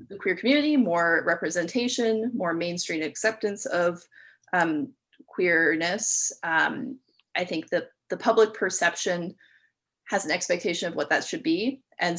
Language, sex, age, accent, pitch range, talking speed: English, female, 20-39, American, 170-220 Hz, 135 wpm